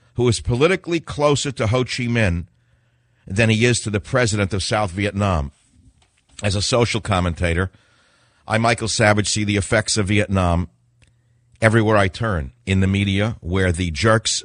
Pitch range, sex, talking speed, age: 95-120 Hz, male, 160 wpm, 50-69